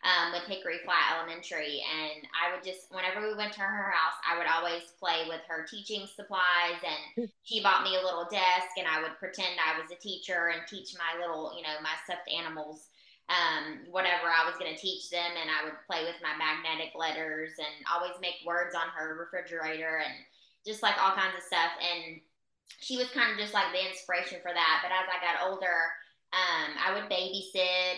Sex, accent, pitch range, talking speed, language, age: female, American, 170-195 Hz, 210 wpm, English, 20-39